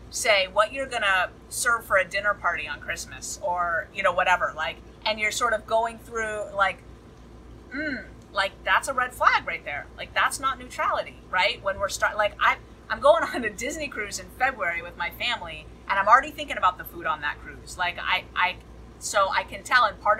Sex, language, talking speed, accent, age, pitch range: female, English, 210 wpm, American, 30-49, 185-255 Hz